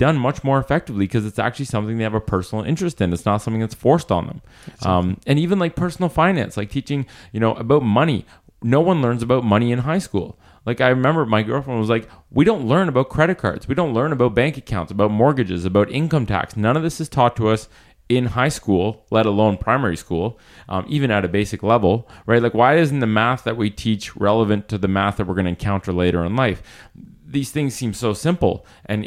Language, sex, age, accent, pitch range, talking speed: English, male, 30-49, American, 100-125 Hz, 230 wpm